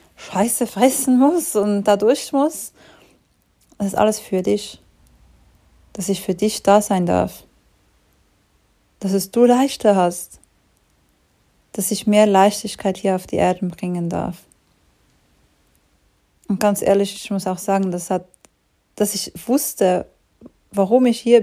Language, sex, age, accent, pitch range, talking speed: German, female, 30-49, German, 185-225 Hz, 135 wpm